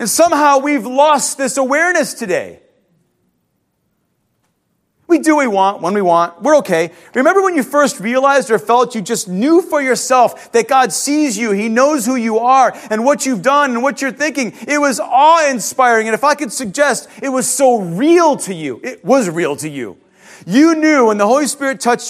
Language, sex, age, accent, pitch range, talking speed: English, male, 30-49, American, 215-295 Hz, 195 wpm